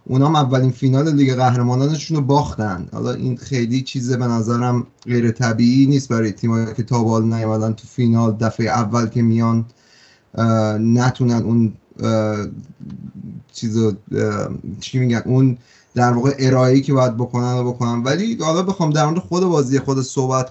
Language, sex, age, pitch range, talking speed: Persian, male, 30-49, 120-150 Hz, 140 wpm